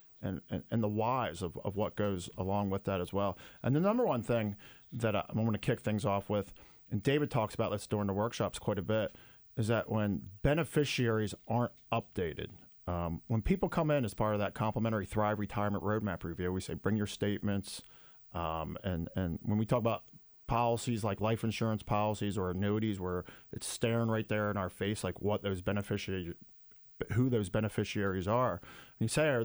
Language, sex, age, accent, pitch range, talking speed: English, male, 40-59, American, 100-115 Hz, 200 wpm